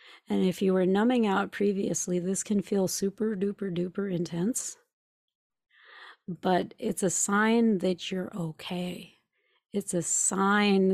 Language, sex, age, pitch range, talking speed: English, female, 40-59, 180-205 Hz, 130 wpm